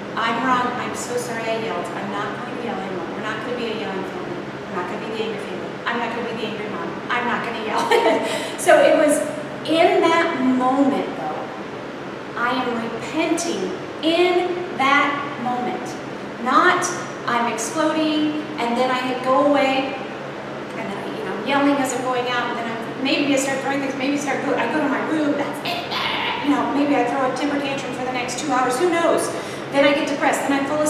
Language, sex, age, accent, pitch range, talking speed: English, female, 40-59, American, 245-300 Hz, 230 wpm